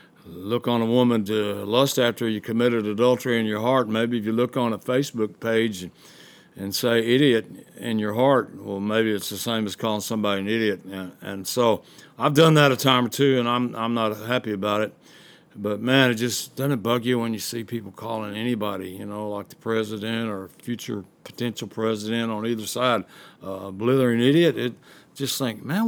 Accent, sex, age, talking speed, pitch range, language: American, male, 60-79, 205 wpm, 110-140 Hz, English